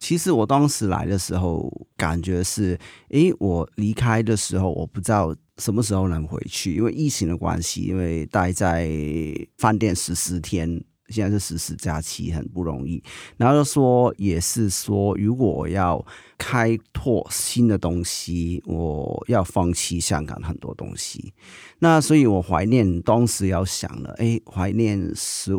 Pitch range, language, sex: 90-115 Hz, Chinese, male